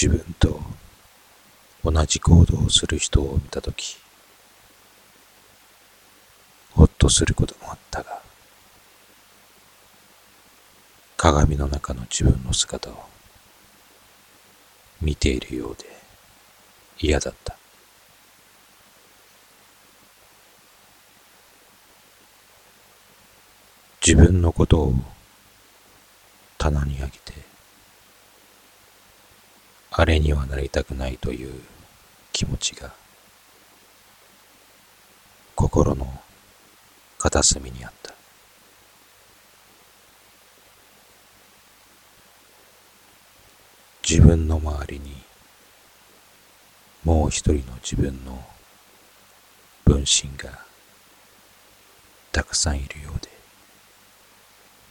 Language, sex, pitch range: Japanese, male, 75-100 Hz